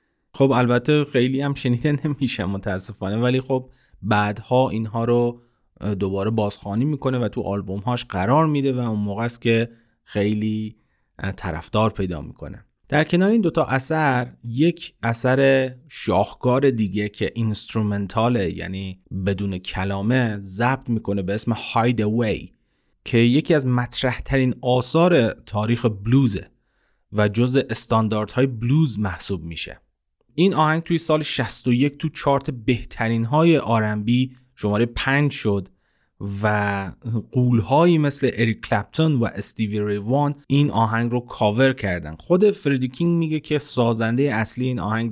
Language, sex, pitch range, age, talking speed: Persian, male, 105-130 Hz, 30-49, 130 wpm